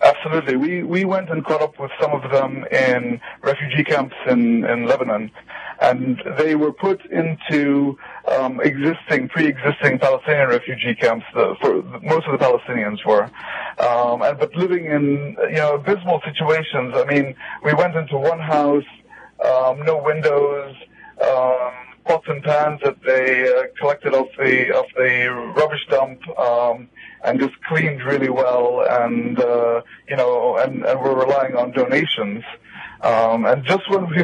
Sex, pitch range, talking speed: male, 125-160 Hz, 160 wpm